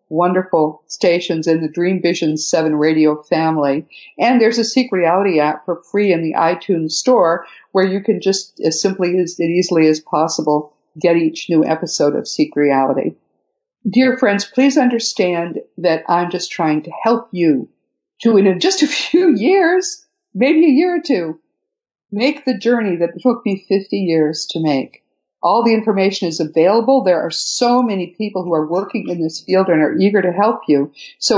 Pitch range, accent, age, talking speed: 160-230 Hz, American, 50-69, 180 wpm